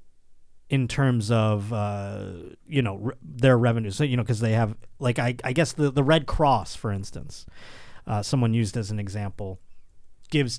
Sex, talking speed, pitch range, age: male, 175 wpm, 105-140 Hz, 30-49